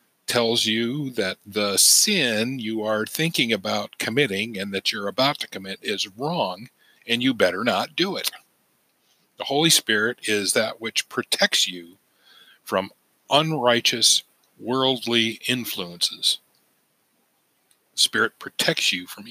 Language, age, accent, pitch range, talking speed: English, 40-59, American, 110-135 Hz, 125 wpm